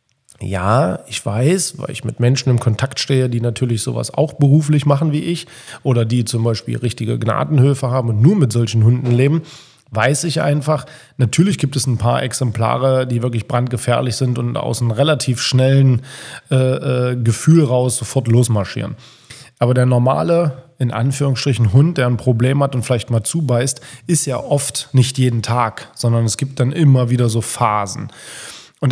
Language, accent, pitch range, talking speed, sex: German, German, 120-140 Hz, 175 wpm, male